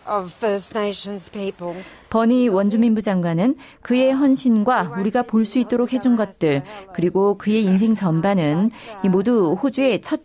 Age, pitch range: 40-59, 180-235 Hz